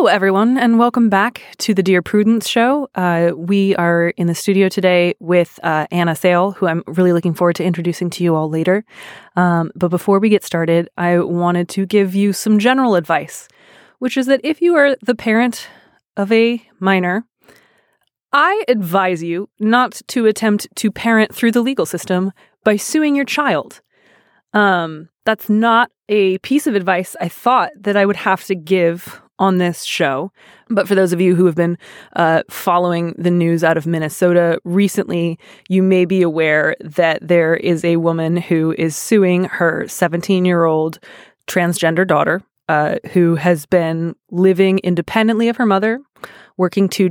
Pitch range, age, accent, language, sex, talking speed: 170-200 Hz, 20-39, American, English, female, 175 wpm